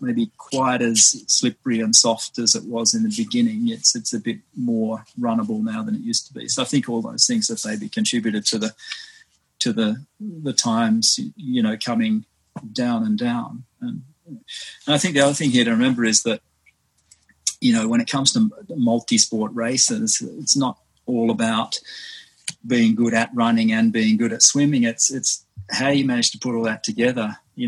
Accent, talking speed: Australian, 190 wpm